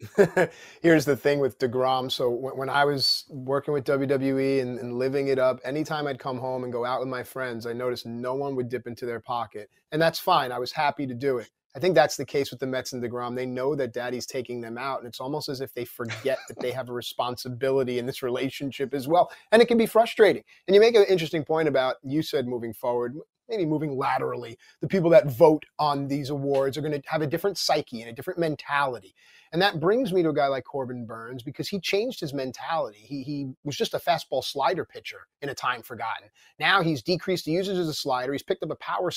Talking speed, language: 240 wpm, English